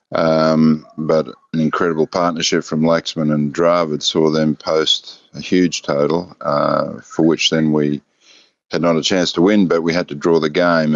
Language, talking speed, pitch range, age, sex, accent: English, 180 wpm, 75-80 Hz, 50-69, male, Australian